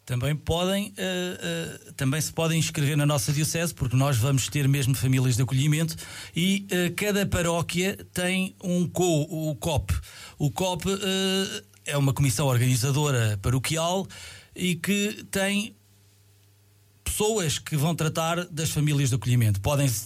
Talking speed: 145 wpm